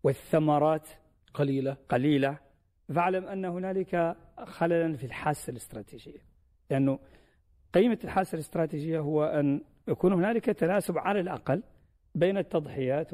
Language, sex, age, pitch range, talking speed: Arabic, male, 50-69, 130-170 Hz, 110 wpm